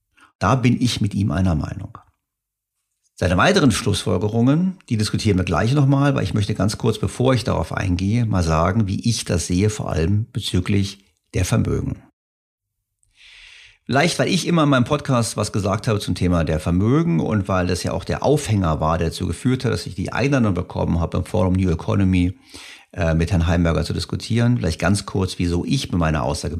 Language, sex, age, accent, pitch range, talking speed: German, male, 50-69, German, 90-115 Hz, 190 wpm